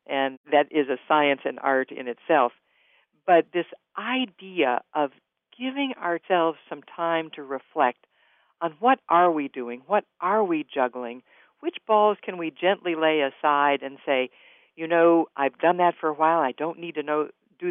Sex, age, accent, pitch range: female, 60-79, American, 140-175 Hz